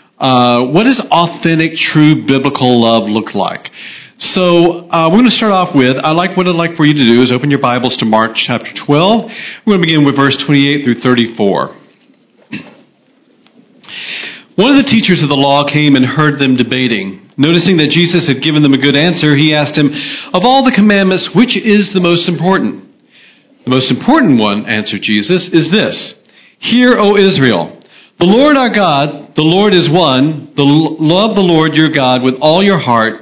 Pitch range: 130-185 Hz